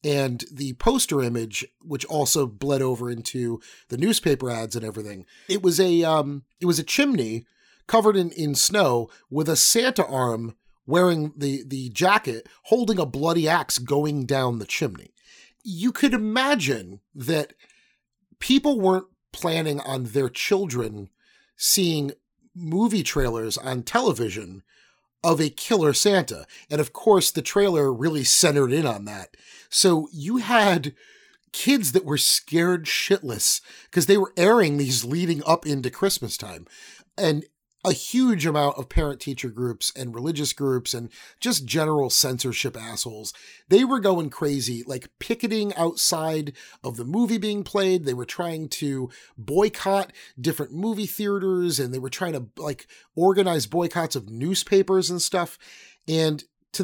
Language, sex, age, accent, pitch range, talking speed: English, male, 40-59, American, 130-190 Hz, 145 wpm